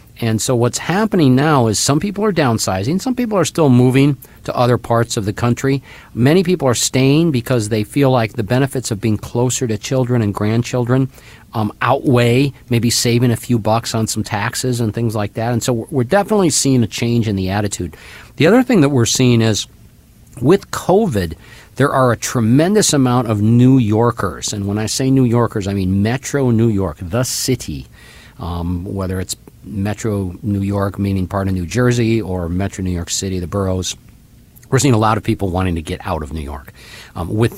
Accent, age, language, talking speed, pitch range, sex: American, 50-69, English, 200 wpm, 100-125 Hz, male